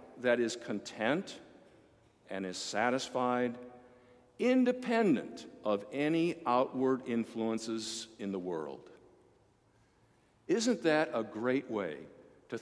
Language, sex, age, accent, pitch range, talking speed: English, male, 50-69, American, 115-170 Hz, 95 wpm